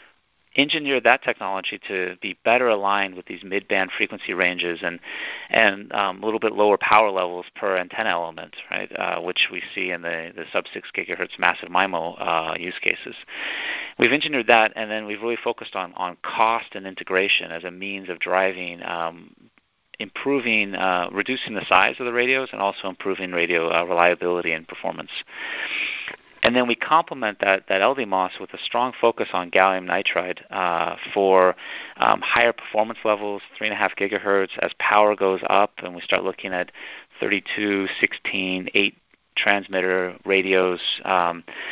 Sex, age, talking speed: male, 40-59, 160 wpm